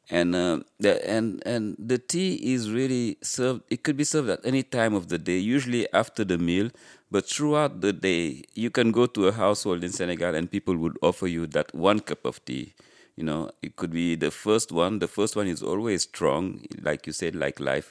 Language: English